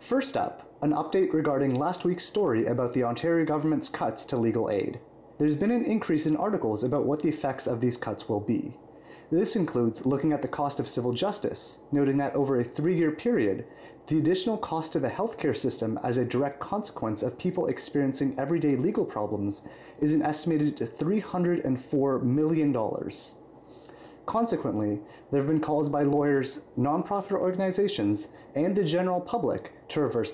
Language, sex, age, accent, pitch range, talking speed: English, male, 30-49, American, 135-180 Hz, 165 wpm